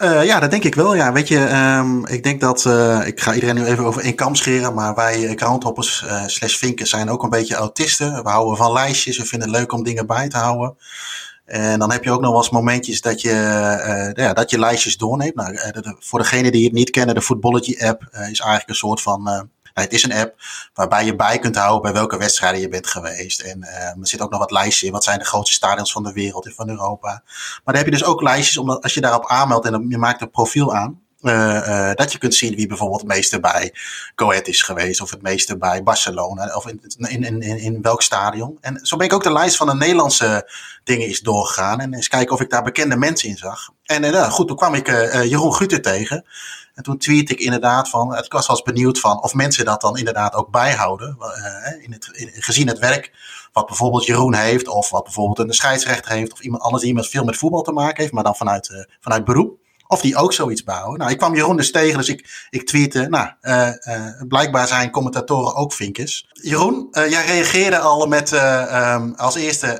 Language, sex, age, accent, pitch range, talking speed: Dutch, male, 30-49, Dutch, 110-135 Hz, 235 wpm